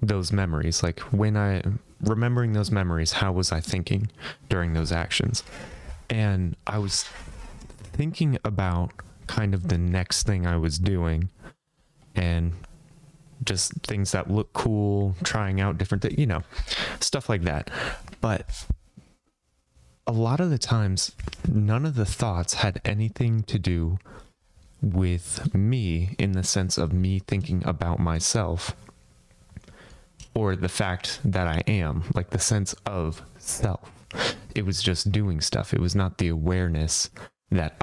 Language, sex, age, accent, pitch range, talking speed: English, male, 30-49, American, 85-110 Hz, 140 wpm